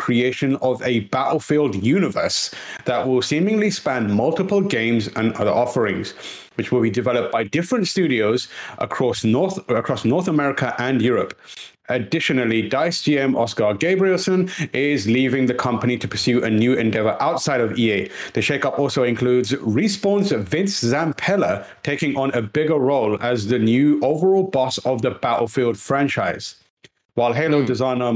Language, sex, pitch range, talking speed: English, male, 115-150 Hz, 145 wpm